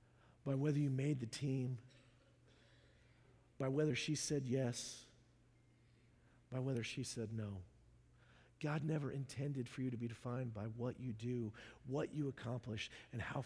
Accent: American